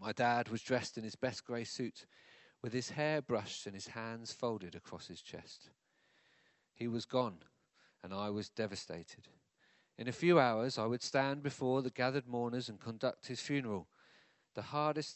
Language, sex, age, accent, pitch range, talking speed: English, male, 40-59, British, 100-125 Hz, 175 wpm